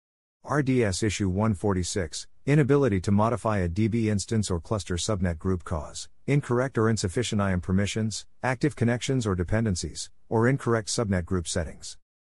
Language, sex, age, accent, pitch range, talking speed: English, male, 50-69, American, 90-115 Hz, 140 wpm